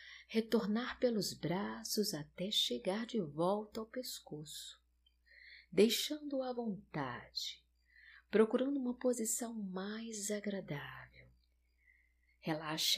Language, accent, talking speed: Portuguese, Brazilian, 85 wpm